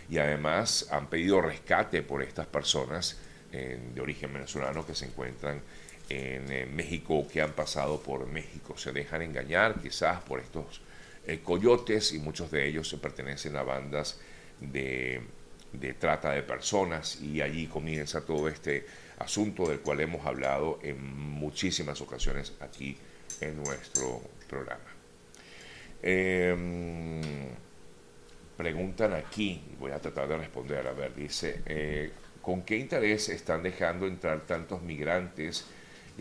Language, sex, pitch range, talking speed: Spanish, male, 70-80 Hz, 140 wpm